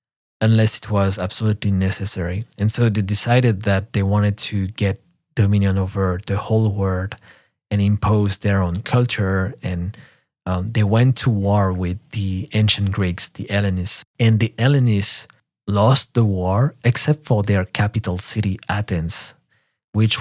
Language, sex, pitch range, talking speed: English, male, 95-115 Hz, 145 wpm